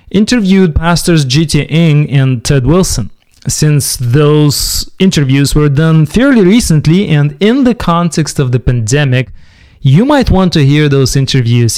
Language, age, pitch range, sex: English, 30-49, 125-170 Hz, male